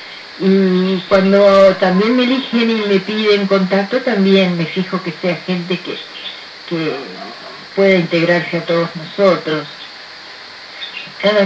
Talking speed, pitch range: 120 wpm, 155-195 Hz